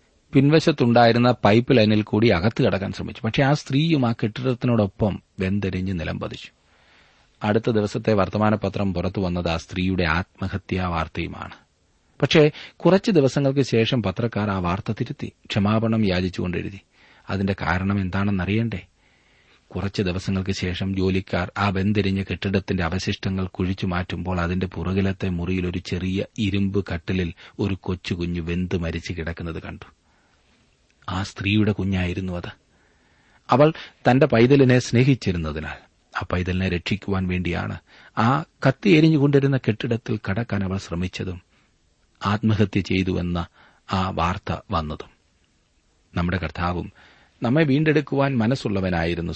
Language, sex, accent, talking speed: Malayalam, male, native, 100 wpm